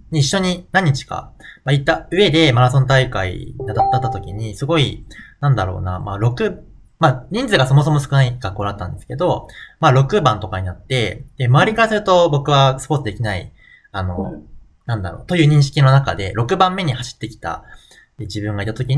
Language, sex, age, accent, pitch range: Japanese, male, 20-39, native, 105-155 Hz